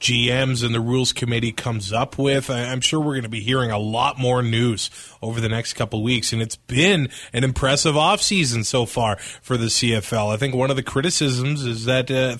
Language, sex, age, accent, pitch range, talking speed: English, male, 20-39, American, 120-155 Hz, 225 wpm